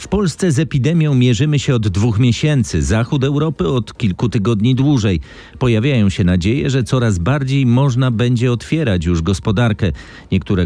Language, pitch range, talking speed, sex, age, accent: Polish, 95-130 Hz, 150 wpm, male, 40-59, native